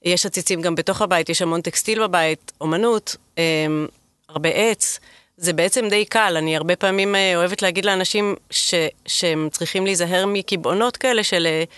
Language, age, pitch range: Hebrew, 30-49, 165-200 Hz